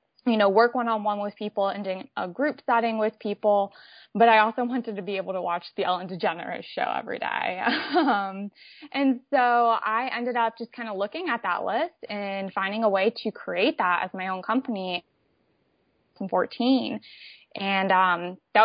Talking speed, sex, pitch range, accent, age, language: 185 wpm, female, 185-220 Hz, American, 20-39, English